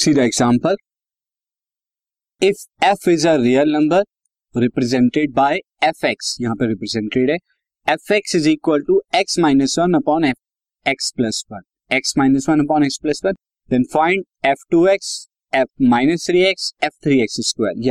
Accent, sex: native, male